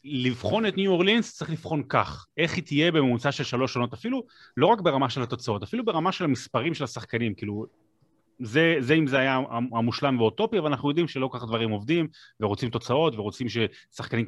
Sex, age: male, 30-49